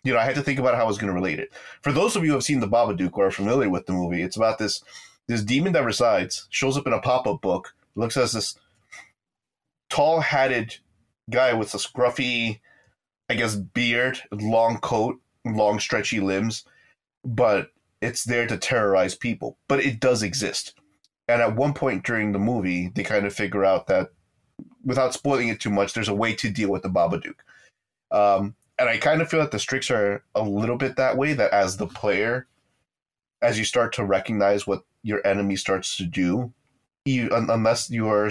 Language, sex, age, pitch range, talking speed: English, male, 30-49, 100-125 Hz, 200 wpm